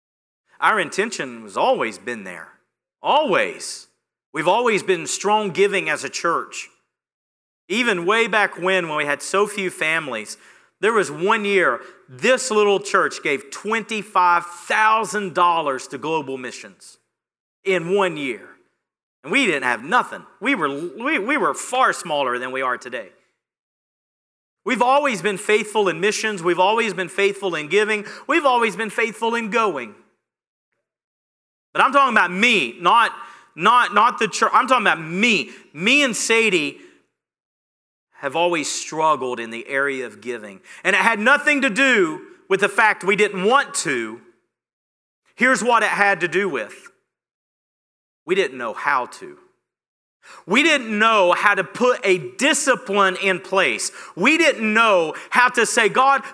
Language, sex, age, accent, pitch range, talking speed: English, male, 40-59, American, 180-250 Hz, 150 wpm